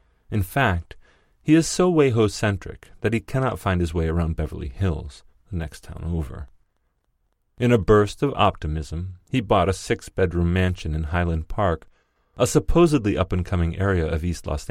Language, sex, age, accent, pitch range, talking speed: English, male, 30-49, American, 80-110 Hz, 165 wpm